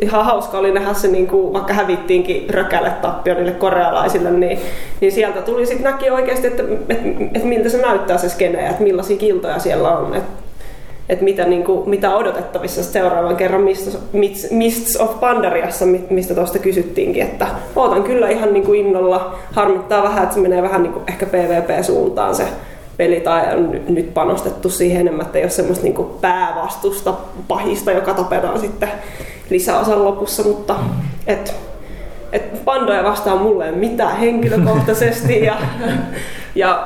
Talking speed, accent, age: 130 wpm, native, 20-39